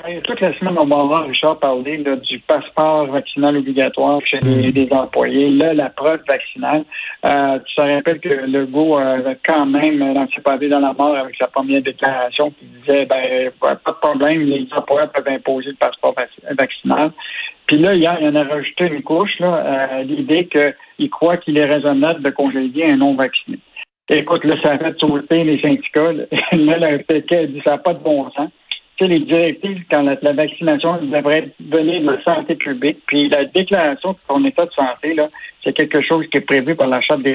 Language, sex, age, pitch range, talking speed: French, male, 60-79, 140-165 Hz, 200 wpm